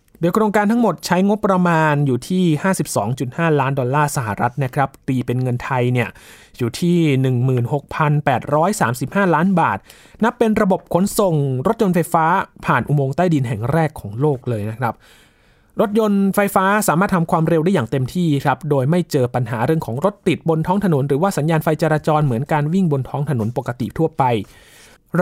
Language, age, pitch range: Thai, 20-39, 125-170 Hz